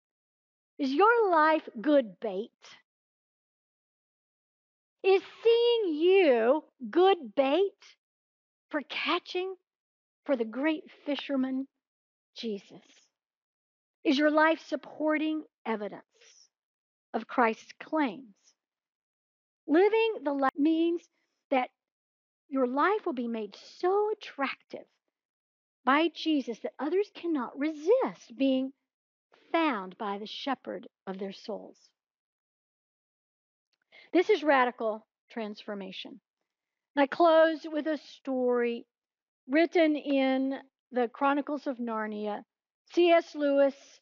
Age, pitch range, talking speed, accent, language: 50-69, 245-335 Hz, 95 wpm, American, English